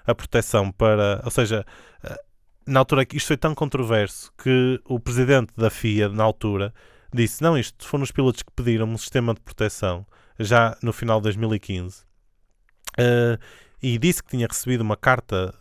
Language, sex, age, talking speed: Portuguese, male, 20-39, 170 wpm